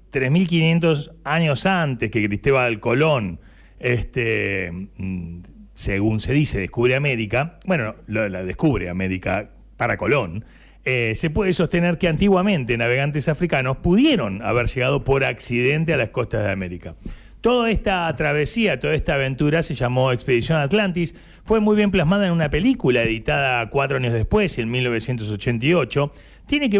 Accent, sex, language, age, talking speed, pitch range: Argentinian, male, Spanish, 40-59, 135 wpm, 120-195 Hz